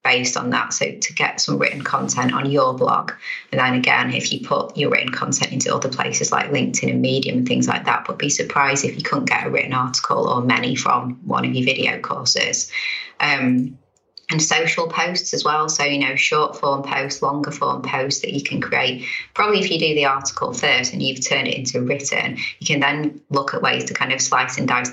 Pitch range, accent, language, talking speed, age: 125-145 Hz, British, English, 225 wpm, 20-39